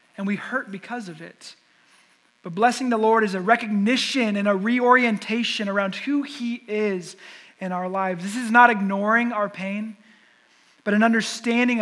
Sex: male